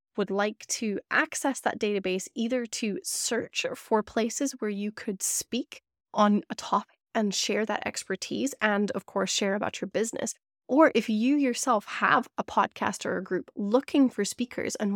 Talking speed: 175 wpm